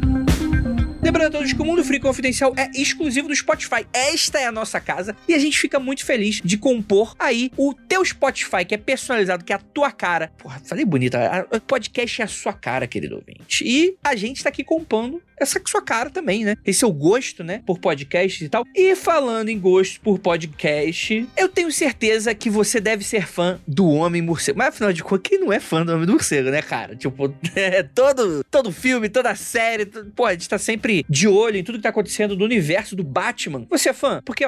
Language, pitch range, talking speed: Portuguese, 175-255 Hz, 220 wpm